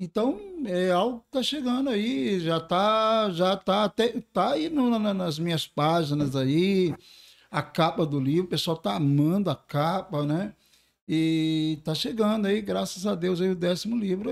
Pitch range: 155-200 Hz